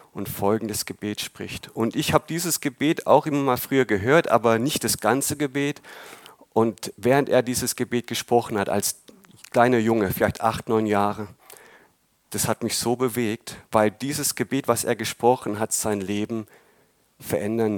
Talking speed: 160 wpm